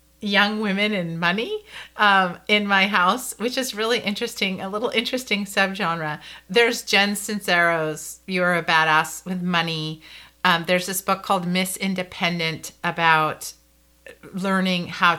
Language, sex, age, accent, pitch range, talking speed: English, female, 40-59, American, 170-200 Hz, 140 wpm